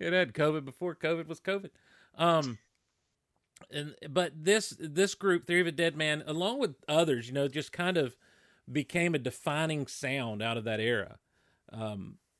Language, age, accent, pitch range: English, 40-59, American, 120-150 Hz